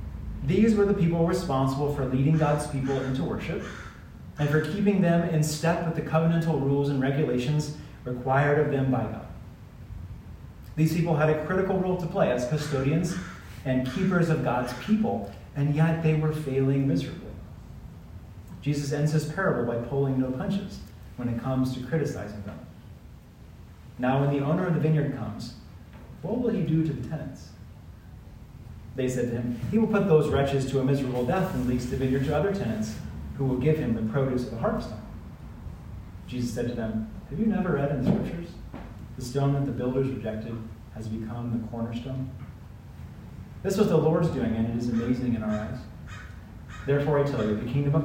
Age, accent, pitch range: 30-49, American, 110-150 Hz